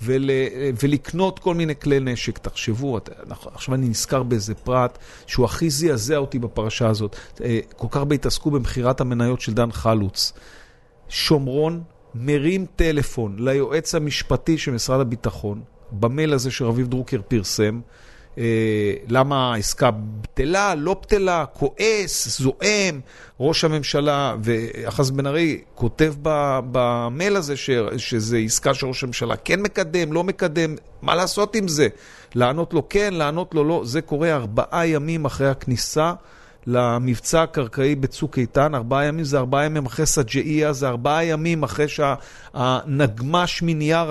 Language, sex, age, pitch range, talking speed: Hebrew, male, 40-59, 120-155 Hz, 130 wpm